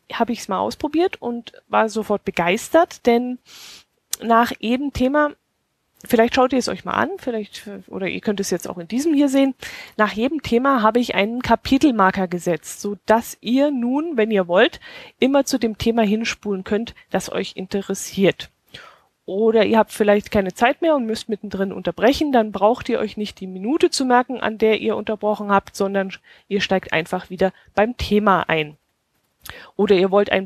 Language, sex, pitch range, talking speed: German, female, 195-240 Hz, 180 wpm